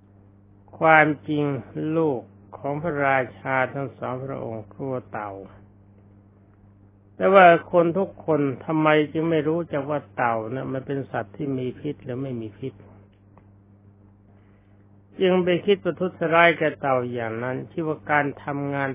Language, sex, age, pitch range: Thai, male, 60-79, 100-150 Hz